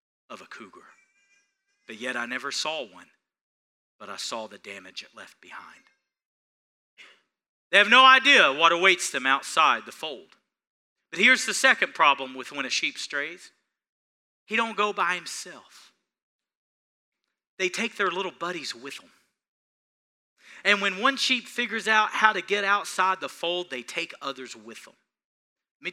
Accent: American